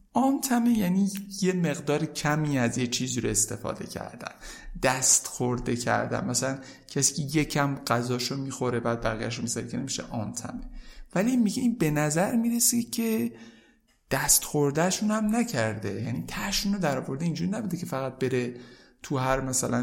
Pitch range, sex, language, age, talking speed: 125-185 Hz, male, Persian, 50-69, 150 wpm